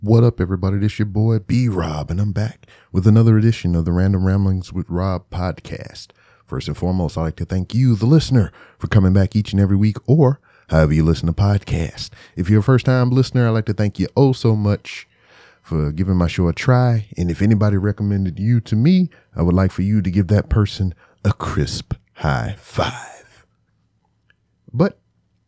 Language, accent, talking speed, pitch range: English, American, 200 wpm, 95-120 Hz